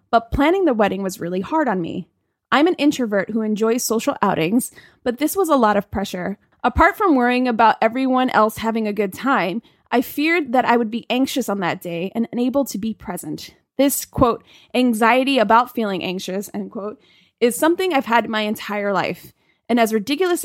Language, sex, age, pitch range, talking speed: English, female, 20-39, 215-275 Hz, 195 wpm